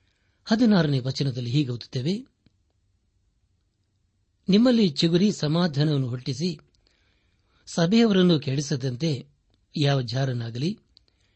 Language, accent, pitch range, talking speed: Kannada, native, 100-155 Hz, 65 wpm